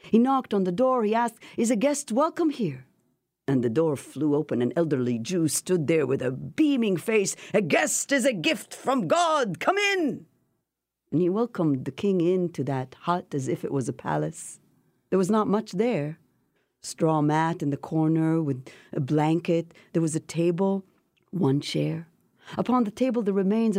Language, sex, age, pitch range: English, female, 50-69, 160-245 Hz